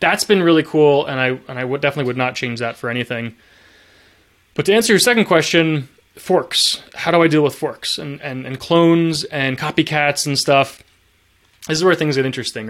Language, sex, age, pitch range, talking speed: English, male, 20-39, 130-165 Hz, 205 wpm